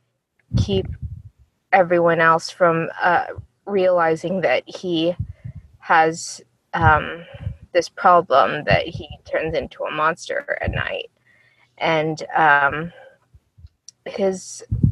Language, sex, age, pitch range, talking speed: English, female, 20-39, 155-180 Hz, 95 wpm